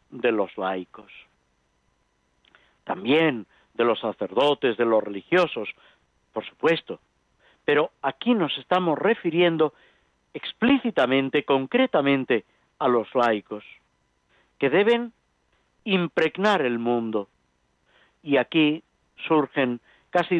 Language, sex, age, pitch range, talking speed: Spanish, male, 50-69, 110-175 Hz, 90 wpm